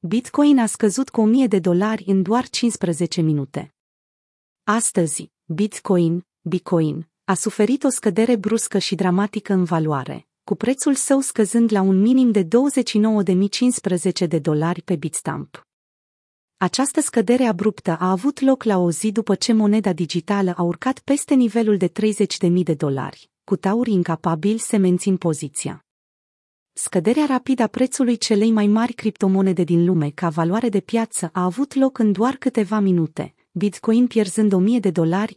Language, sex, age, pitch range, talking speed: Romanian, female, 30-49, 180-230 Hz, 150 wpm